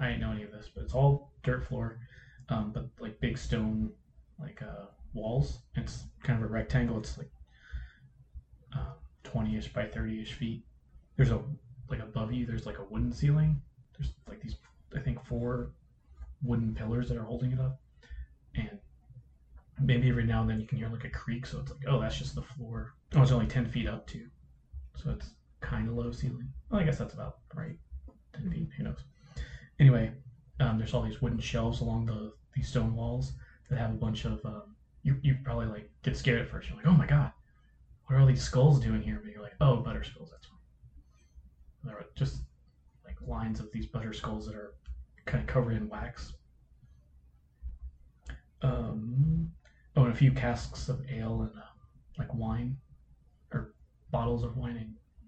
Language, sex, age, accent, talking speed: English, male, 20-39, American, 195 wpm